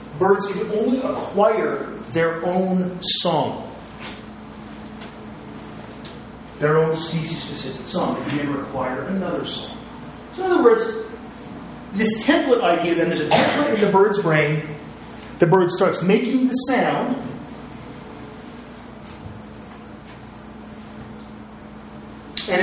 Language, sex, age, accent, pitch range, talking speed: English, male, 40-59, American, 160-215 Hz, 105 wpm